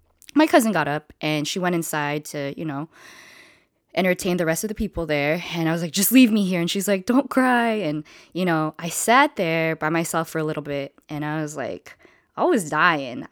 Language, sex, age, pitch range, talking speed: English, female, 20-39, 150-180 Hz, 225 wpm